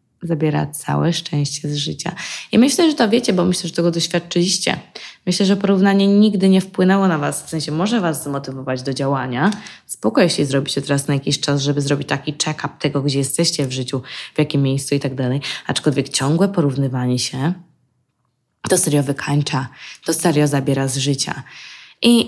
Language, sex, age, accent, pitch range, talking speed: Polish, female, 20-39, native, 140-185 Hz, 175 wpm